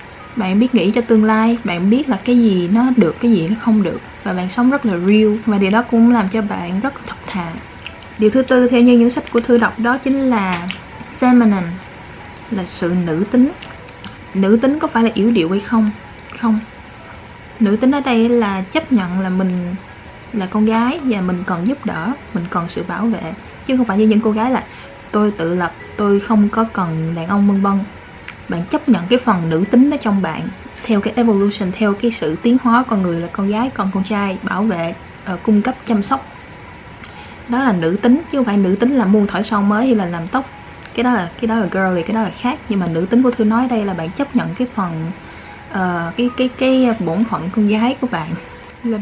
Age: 20-39